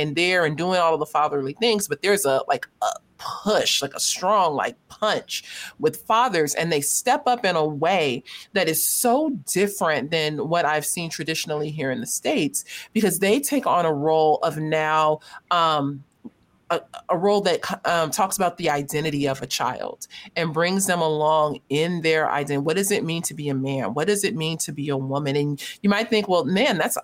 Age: 30-49